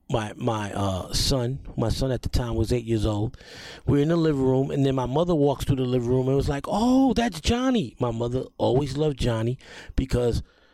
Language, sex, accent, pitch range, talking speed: English, male, American, 115-145 Hz, 220 wpm